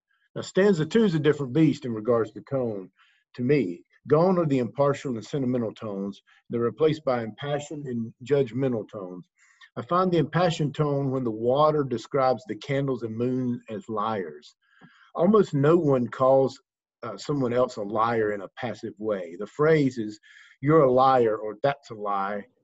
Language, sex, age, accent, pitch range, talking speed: English, male, 50-69, American, 115-150 Hz, 170 wpm